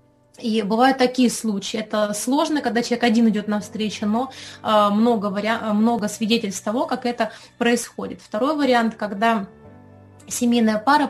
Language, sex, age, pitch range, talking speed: Ukrainian, female, 20-39, 215-250 Hz, 130 wpm